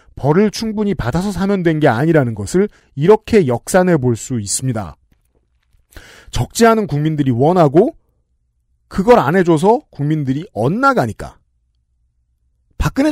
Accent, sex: native, male